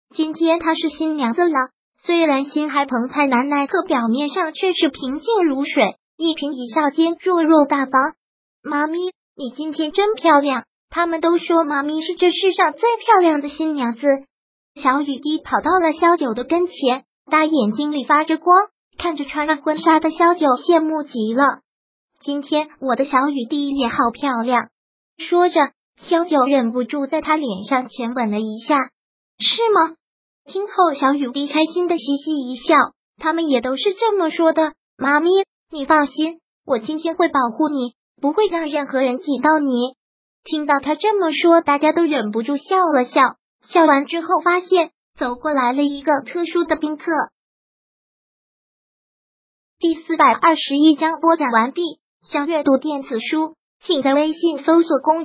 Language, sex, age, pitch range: Chinese, male, 20-39, 275-330 Hz